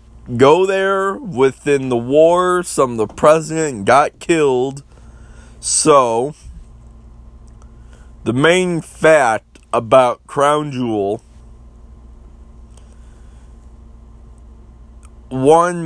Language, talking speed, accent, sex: English, 70 wpm, American, male